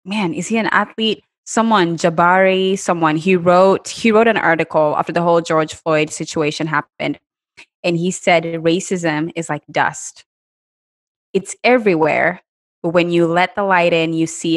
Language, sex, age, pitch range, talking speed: English, female, 20-39, 165-195 Hz, 160 wpm